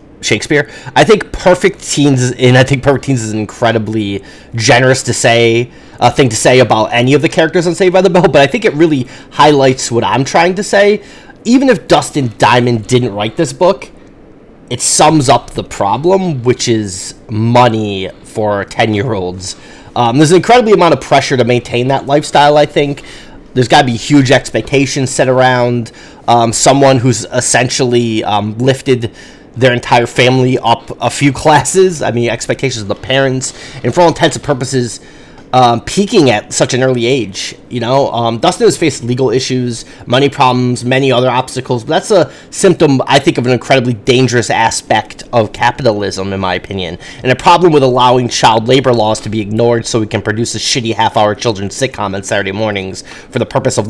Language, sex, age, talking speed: English, male, 30-49, 190 wpm